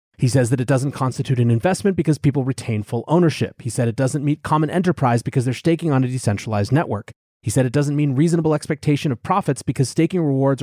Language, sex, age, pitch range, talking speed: English, male, 30-49, 125-175 Hz, 220 wpm